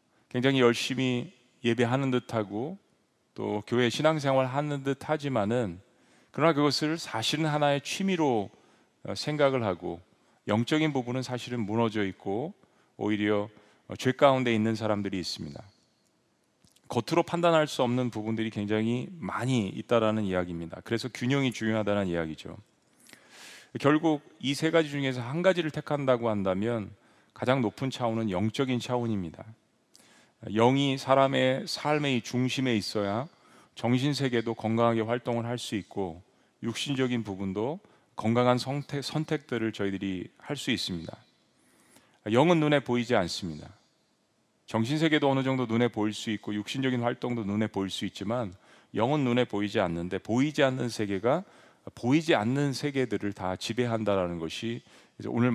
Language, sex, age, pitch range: Korean, male, 40-59, 105-135 Hz